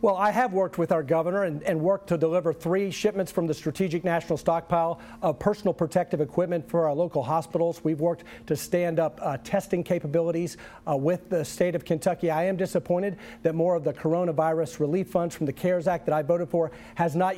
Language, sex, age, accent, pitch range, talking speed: English, male, 50-69, American, 165-200 Hz, 210 wpm